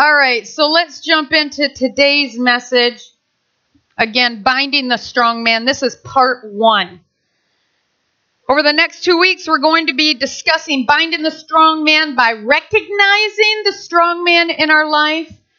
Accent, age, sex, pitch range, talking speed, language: American, 40-59, female, 230-315 Hz, 145 wpm, English